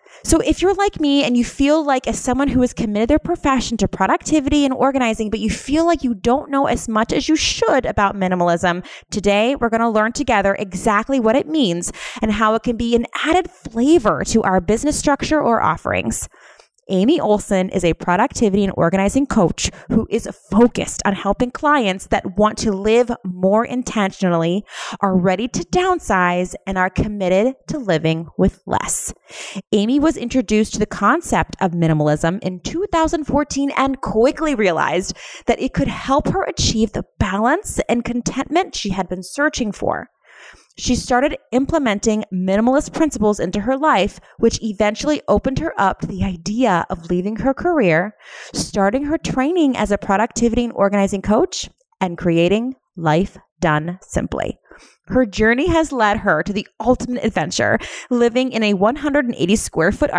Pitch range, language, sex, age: 195-270 Hz, English, female, 20-39